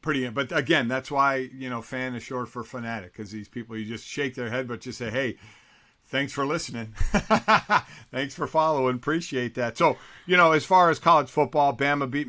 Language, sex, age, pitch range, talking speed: English, male, 50-69, 120-145 Hz, 210 wpm